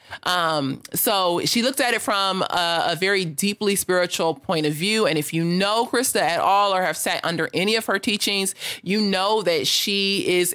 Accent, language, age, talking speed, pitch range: American, English, 30-49, 200 wpm, 165-220 Hz